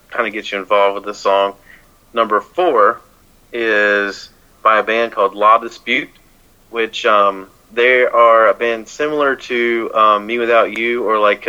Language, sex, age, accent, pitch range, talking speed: English, male, 30-49, American, 105-120 Hz, 160 wpm